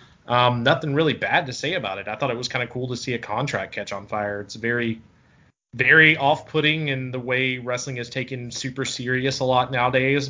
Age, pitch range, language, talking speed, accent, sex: 20-39, 115-130 Hz, English, 220 wpm, American, male